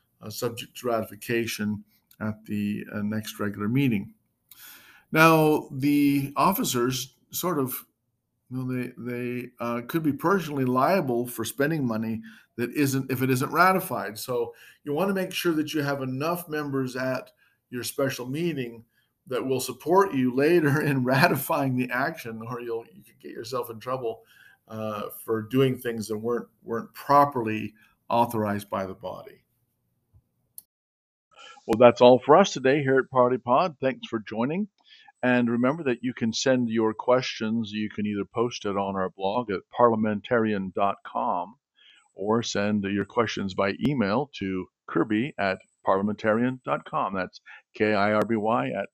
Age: 50-69